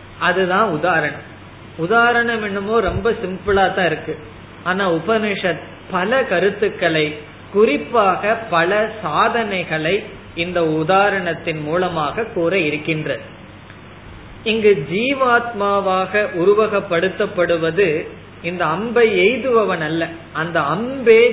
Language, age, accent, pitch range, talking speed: Tamil, 20-39, native, 165-215 Hz, 75 wpm